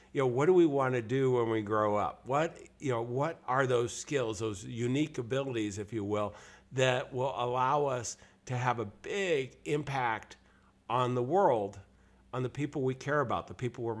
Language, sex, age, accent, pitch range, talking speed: English, male, 50-69, American, 110-140 Hz, 195 wpm